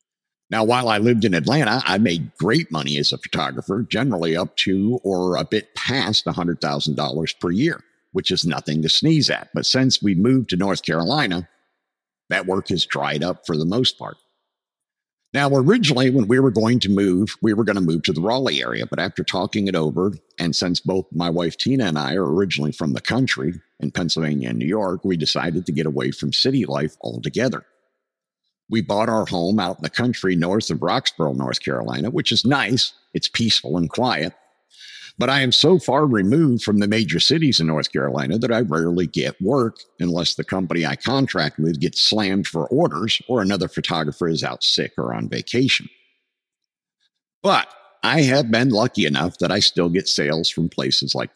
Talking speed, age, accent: 195 wpm, 50-69, American